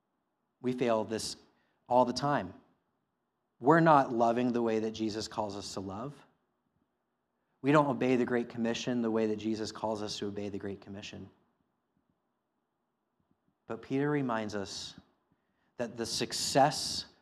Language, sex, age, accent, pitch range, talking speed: English, male, 30-49, American, 110-140 Hz, 145 wpm